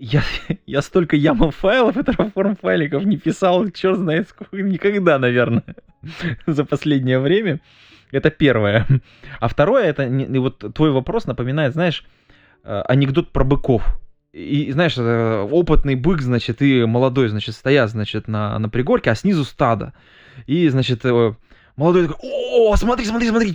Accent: native